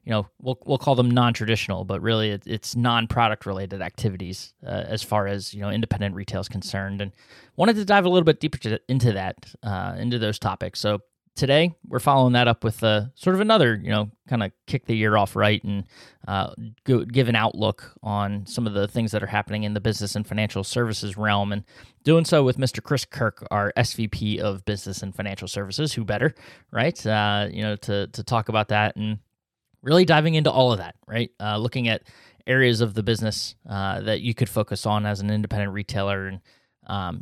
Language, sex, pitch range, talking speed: English, male, 105-120 Hz, 215 wpm